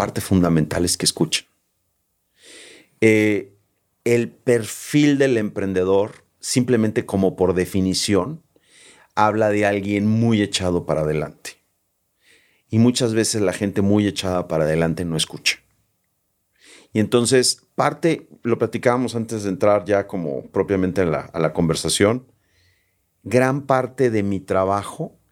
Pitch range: 95-120 Hz